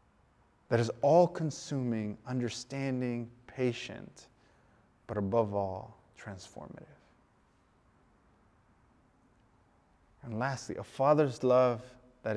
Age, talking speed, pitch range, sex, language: 20-39, 75 wpm, 105-130 Hz, male, English